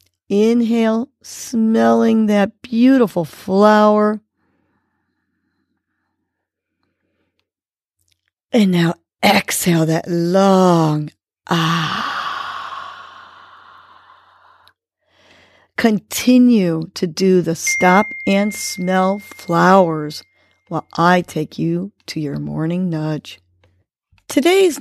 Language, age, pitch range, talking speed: English, 50-69, 175-235 Hz, 70 wpm